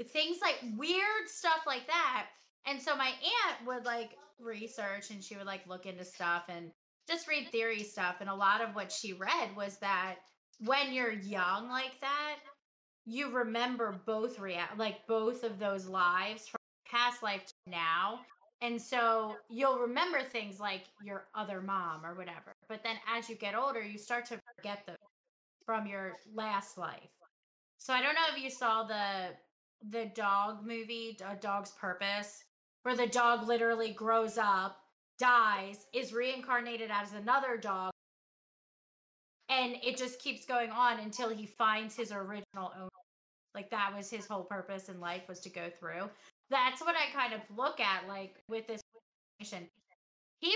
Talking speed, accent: 165 wpm, American